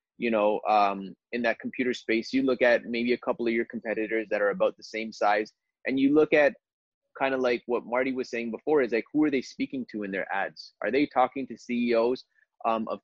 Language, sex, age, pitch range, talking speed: English, male, 20-39, 115-140 Hz, 235 wpm